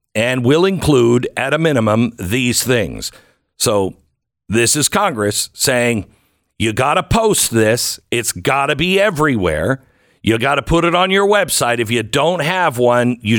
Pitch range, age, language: 115-170 Hz, 50-69, English